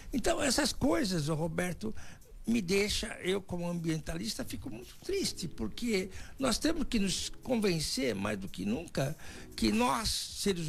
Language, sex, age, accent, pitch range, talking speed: Portuguese, male, 60-79, Brazilian, 160-230 Hz, 145 wpm